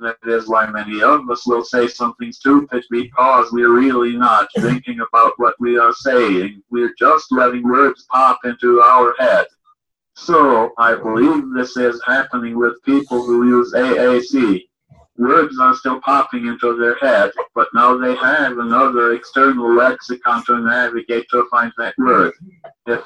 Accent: American